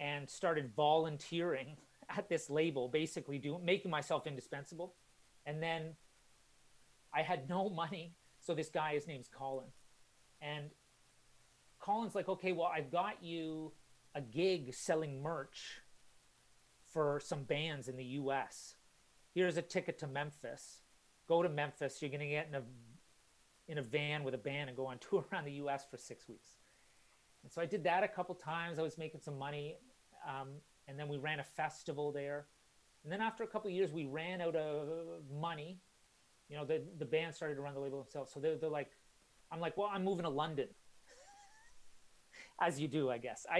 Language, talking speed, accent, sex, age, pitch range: English, 180 wpm, American, male, 30-49, 145-170 Hz